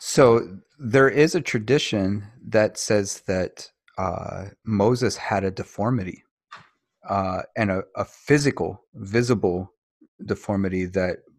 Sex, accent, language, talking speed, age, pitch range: male, American, English, 110 wpm, 30-49, 95-105 Hz